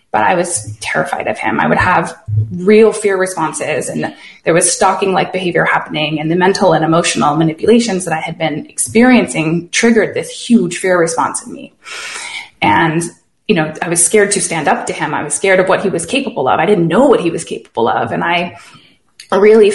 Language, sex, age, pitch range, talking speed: English, female, 20-39, 170-210 Hz, 205 wpm